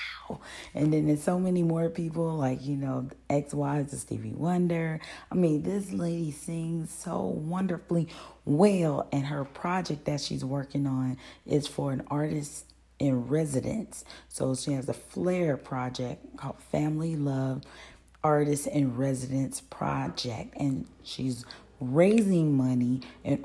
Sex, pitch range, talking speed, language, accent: female, 135-165 Hz, 135 wpm, English, American